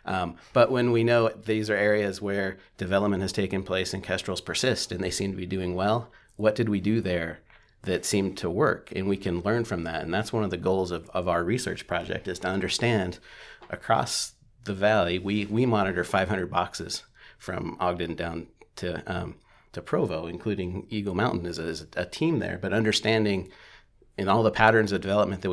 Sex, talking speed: male, 200 wpm